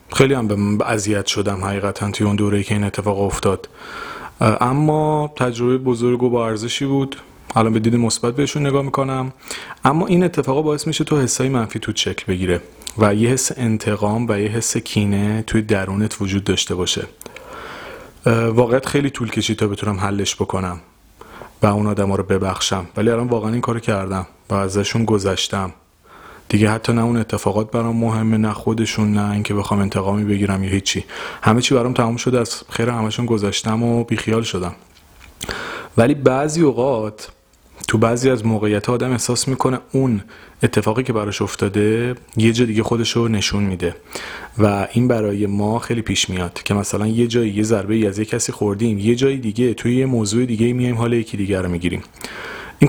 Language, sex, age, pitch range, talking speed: Persian, male, 30-49, 100-120 Hz, 180 wpm